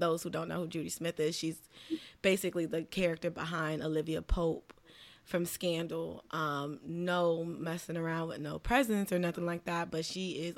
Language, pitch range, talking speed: English, 165-190 Hz, 175 wpm